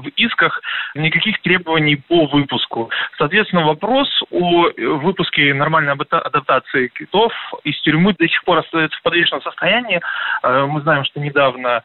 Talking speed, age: 130 wpm, 20-39